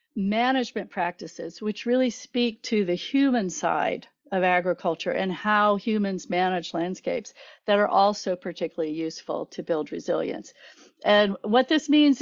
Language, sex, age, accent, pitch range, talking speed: English, female, 50-69, American, 180-240 Hz, 135 wpm